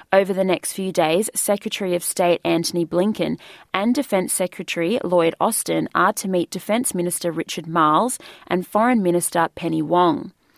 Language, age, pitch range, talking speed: English, 20-39, 170-205 Hz, 155 wpm